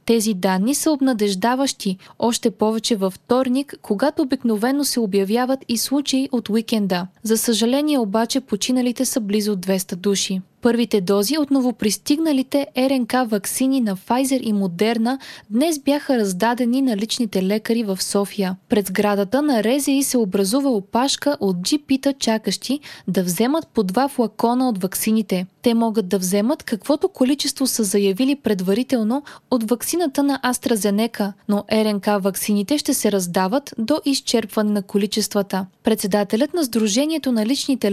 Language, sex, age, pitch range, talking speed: Bulgarian, female, 20-39, 205-265 Hz, 140 wpm